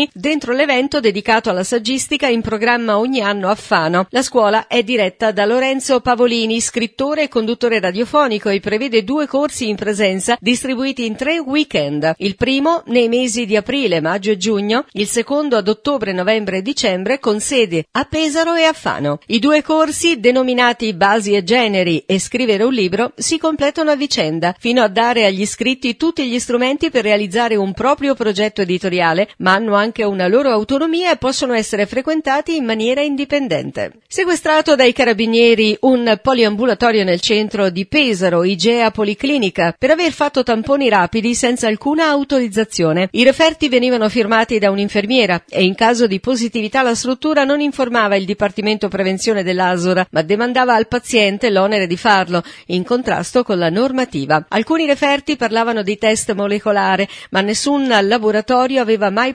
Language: Italian